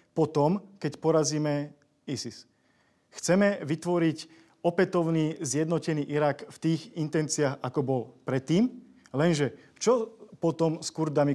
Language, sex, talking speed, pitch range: Slovak, male, 105 wpm, 140-165 Hz